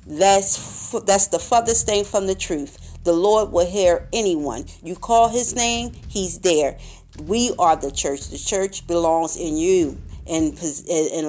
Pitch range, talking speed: 170-215 Hz, 160 wpm